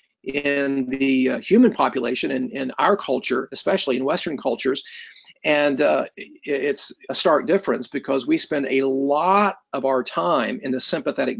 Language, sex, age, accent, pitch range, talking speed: English, male, 40-59, American, 135-205 Hz, 155 wpm